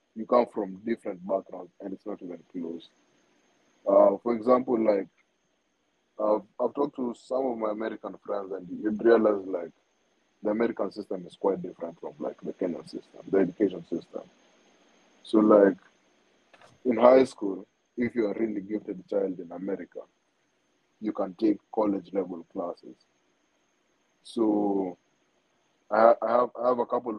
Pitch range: 100-120 Hz